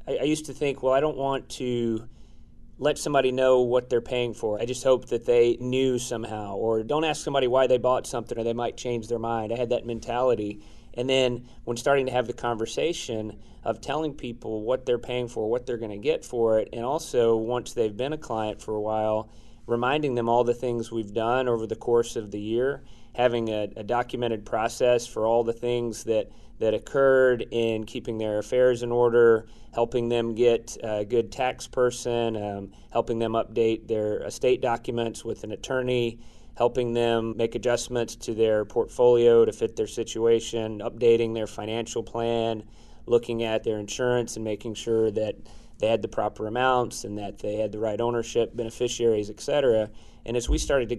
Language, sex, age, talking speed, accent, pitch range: English, male, 30-49, 195 wpm, American, 115-125 Hz